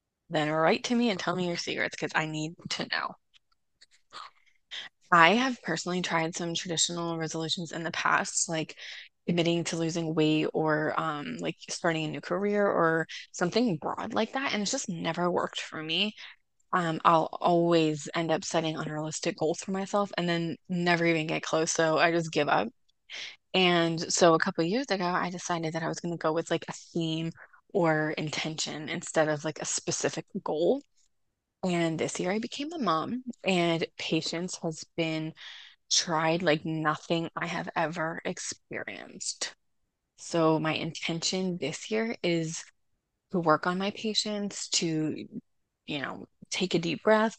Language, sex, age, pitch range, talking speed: English, female, 20-39, 160-195 Hz, 165 wpm